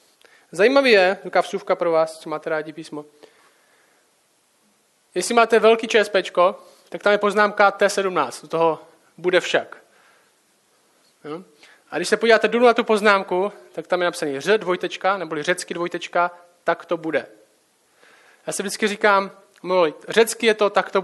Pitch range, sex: 175-220 Hz, male